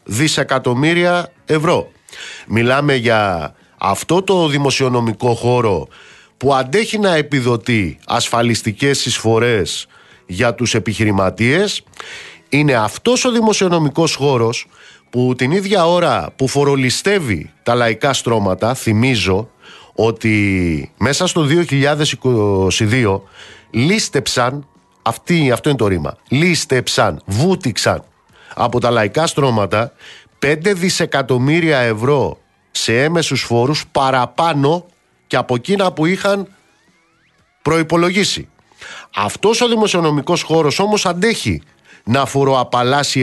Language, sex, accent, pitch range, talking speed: Greek, male, native, 120-170 Hz, 95 wpm